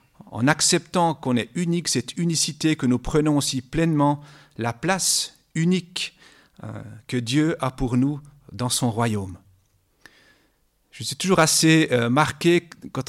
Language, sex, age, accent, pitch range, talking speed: French, male, 40-59, French, 115-150 Hz, 140 wpm